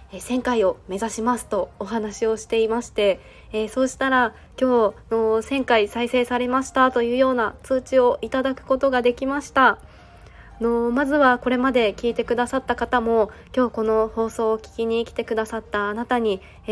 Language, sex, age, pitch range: Japanese, female, 20-39, 210-240 Hz